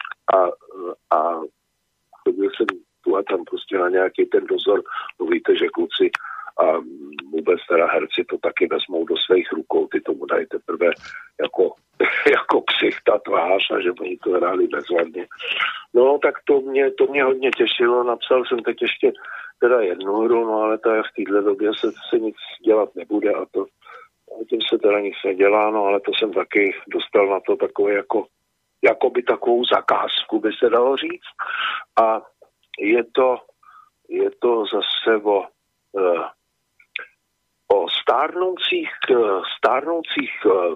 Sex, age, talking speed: male, 50-69, 150 wpm